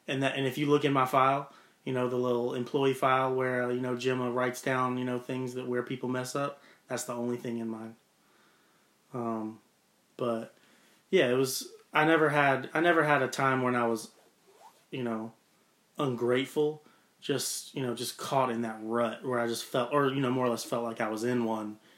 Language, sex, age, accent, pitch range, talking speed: English, male, 30-49, American, 115-130 Hz, 215 wpm